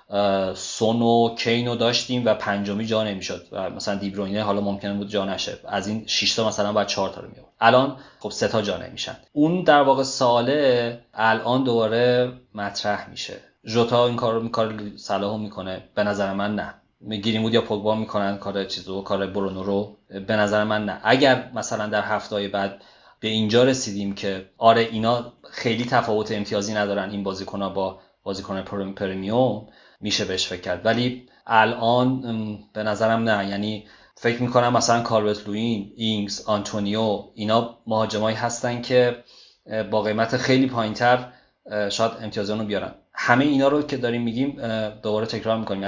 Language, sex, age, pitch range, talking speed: Persian, male, 30-49, 100-115 Hz, 155 wpm